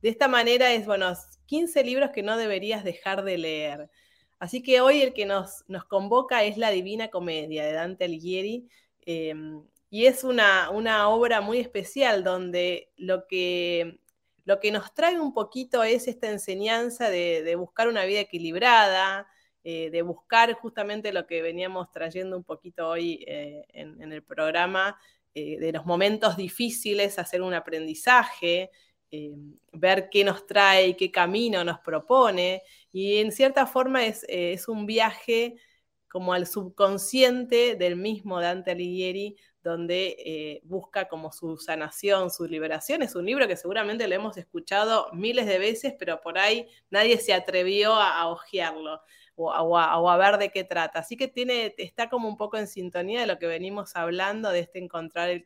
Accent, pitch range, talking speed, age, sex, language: Argentinian, 170-220 Hz, 170 wpm, 20-39, female, Spanish